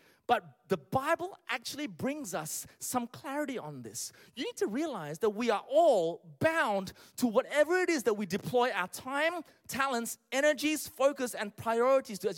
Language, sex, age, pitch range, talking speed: English, male, 30-49, 195-290 Hz, 170 wpm